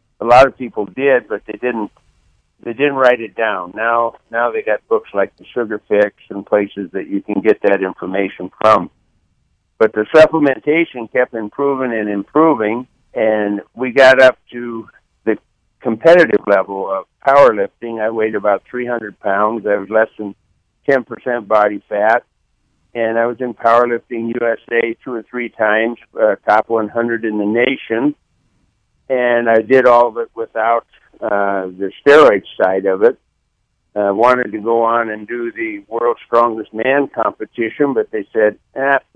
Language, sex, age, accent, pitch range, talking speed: English, male, 60-79, American, 105-130 Hz, 160 wpm